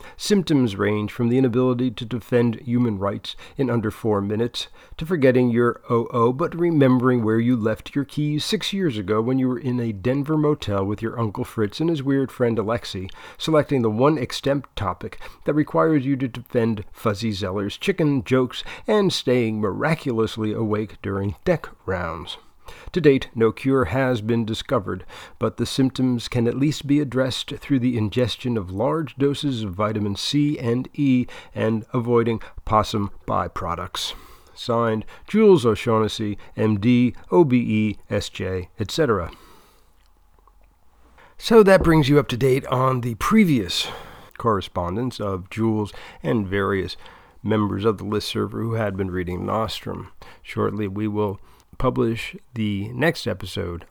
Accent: American